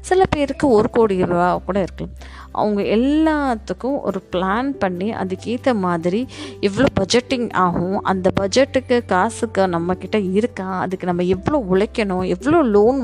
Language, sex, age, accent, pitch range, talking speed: Tamil, female, 20-39, native, 180-260 Hz, 130 wpm